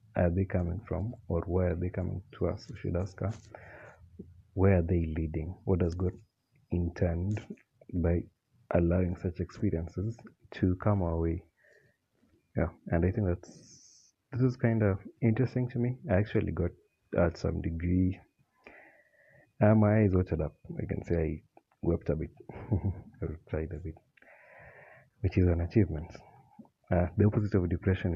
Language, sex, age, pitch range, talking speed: English, male, 30-49, 85-105 Hz, 160 wpm